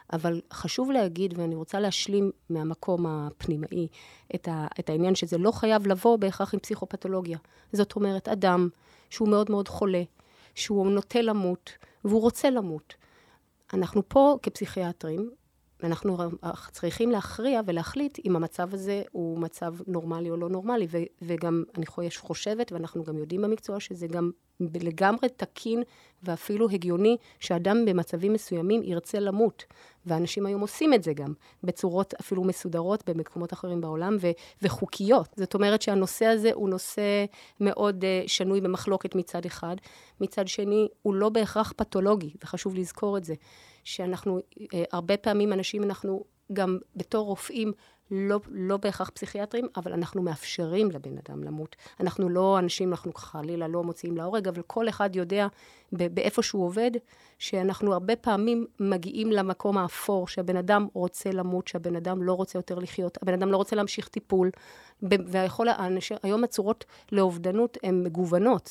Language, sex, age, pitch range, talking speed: Hebrew, female, 30-49, 175-210 Hz, 140 wpm